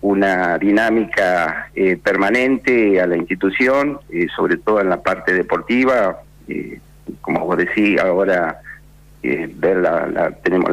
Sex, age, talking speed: male, 50-69, 135 wpm